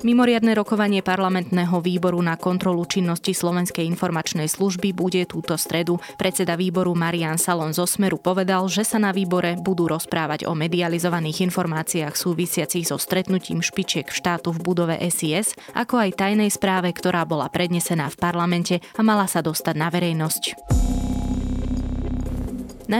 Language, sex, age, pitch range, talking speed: Slovak, female, 20-39, 165-190 Hz, 135 wpm